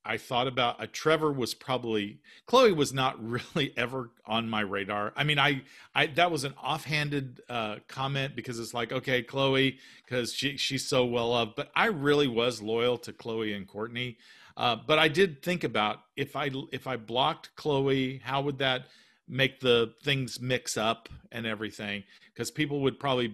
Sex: male